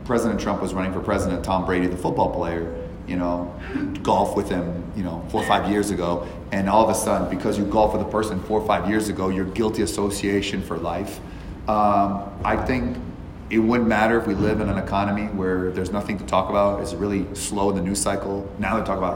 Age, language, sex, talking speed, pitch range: 30-49, English, male, 230 wpm, 95-105 Hz